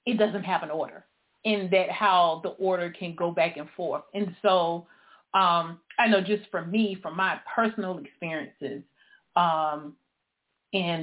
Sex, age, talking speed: female, 30-49, 160 wpm